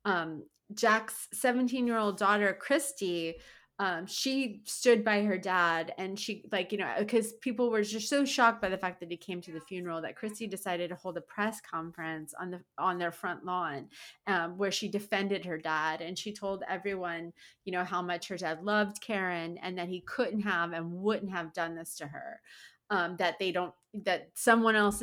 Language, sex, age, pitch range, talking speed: English, female, 30-49, 170-210 Hz, 195 wpm